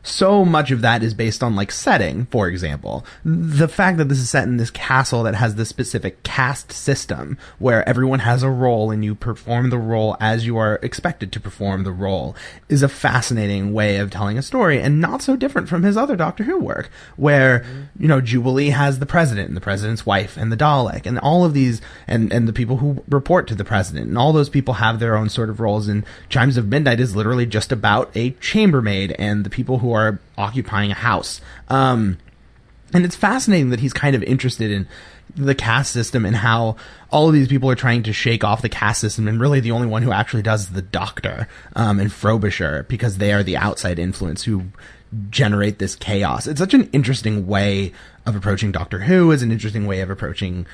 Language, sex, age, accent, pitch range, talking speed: English, male, 30-49, American, 105-135 Hz, 220 wpm